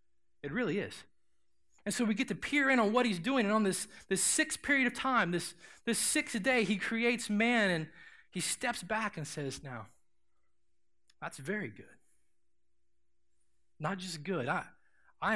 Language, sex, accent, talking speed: English, male, American, 170 wpm